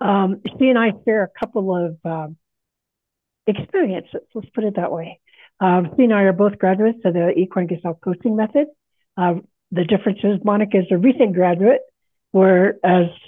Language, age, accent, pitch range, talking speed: English, 60-79, American, 180-225 Hz, 170 wpm